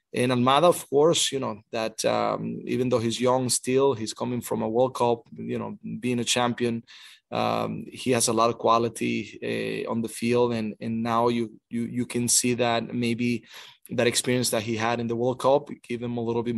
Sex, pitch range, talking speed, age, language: male, 115-130 Hz, 215 wpm, 20-39, English